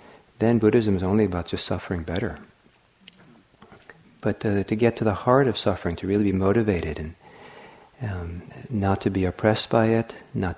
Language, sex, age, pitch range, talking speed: English, male, 50-69, 95-115 Hz, 170 wpm